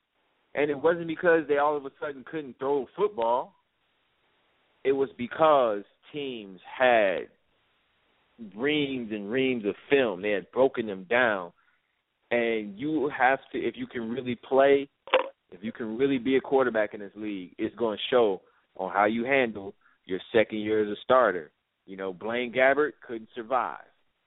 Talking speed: 165 wpm